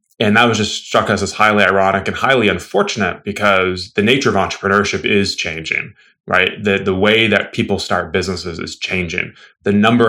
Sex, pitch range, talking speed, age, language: male, 90-105 Hz, 185 wpm, 20-39, English